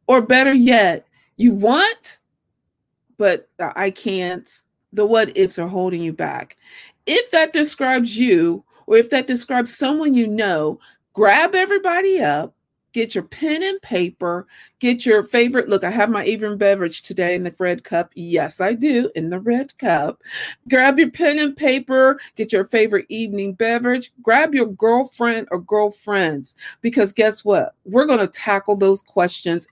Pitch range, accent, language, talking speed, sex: 195-270 Hz, American, English, 160 wpm, female